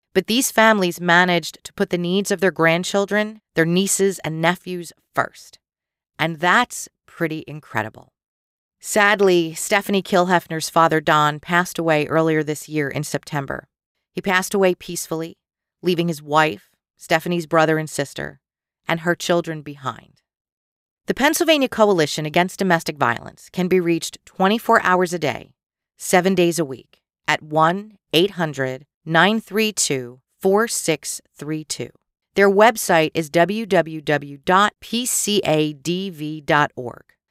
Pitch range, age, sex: 155-190 Hz, 40-59, female